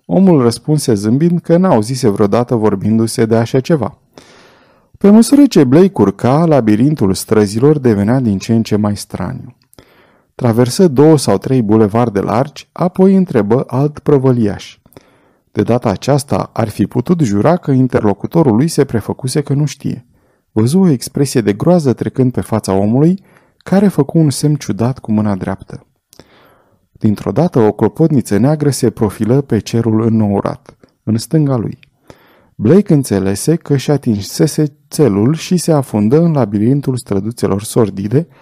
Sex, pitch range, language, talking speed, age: male, 110-150 Hz, Romanian, 145 wpm, 30-49